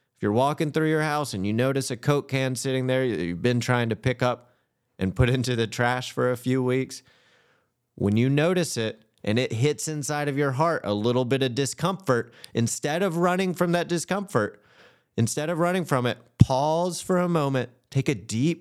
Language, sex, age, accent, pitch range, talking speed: English, male, 30-49, American, 105-135 Hz, 205 wpm